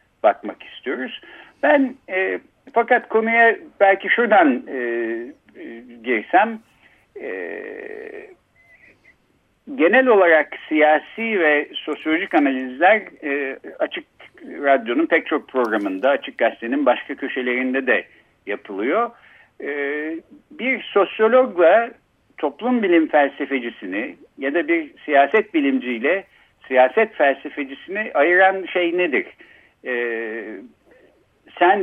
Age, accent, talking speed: 60-79, native, 80 wpm